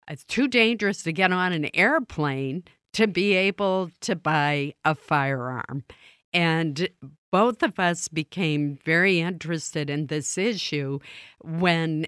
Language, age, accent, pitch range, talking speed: English, 50-69, American, 145-180 Hz, 130 wpm